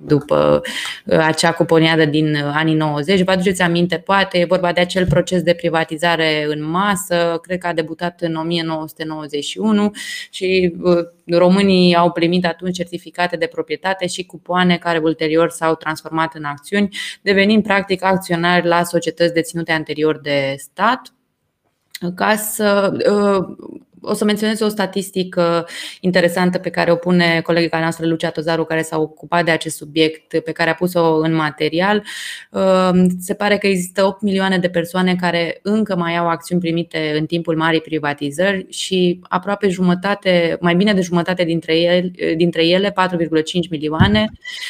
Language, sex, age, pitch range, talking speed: Romanian, female, 20-39, 160-190 Hz, 145 wpm